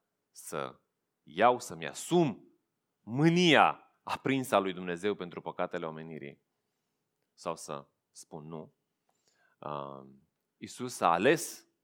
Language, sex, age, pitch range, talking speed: Romanian, male, 30-49, 75-105 Hz, 95 wpm